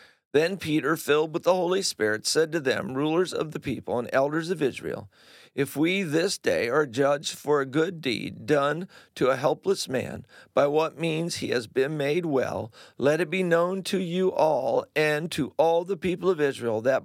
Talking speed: 195 wpm